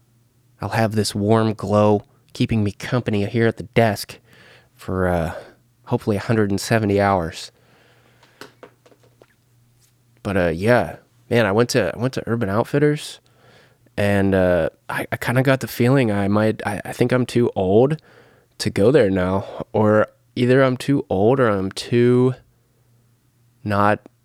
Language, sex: English, male